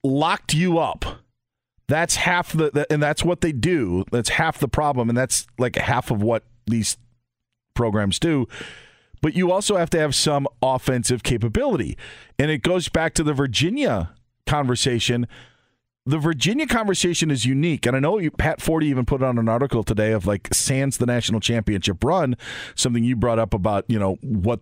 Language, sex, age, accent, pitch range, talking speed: English, male, 40-59, American, 110-145 Hz, 180 wpm